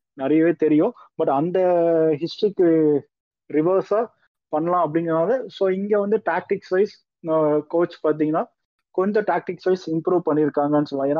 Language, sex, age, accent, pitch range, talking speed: Tamil, male, 20-39, native, 145-180 Hz, 115 wpm